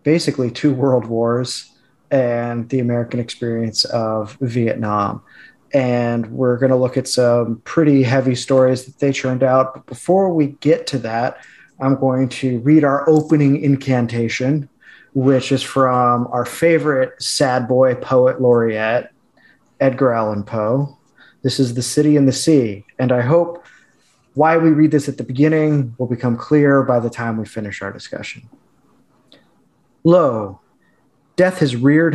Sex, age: male, 30-49